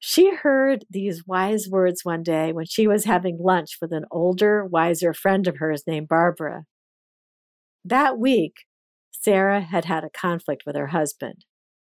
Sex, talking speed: female, 155 wpm